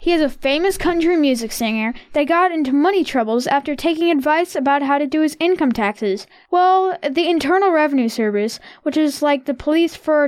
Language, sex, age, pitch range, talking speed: English, female, 10-29, 270-355 Hz, 195 wpm